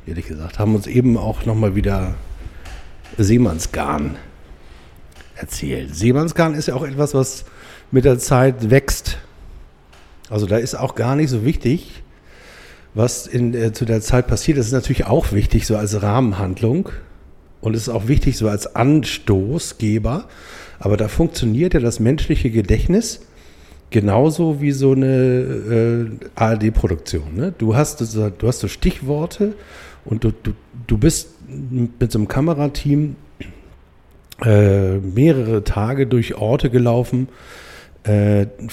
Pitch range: 100-130 Hz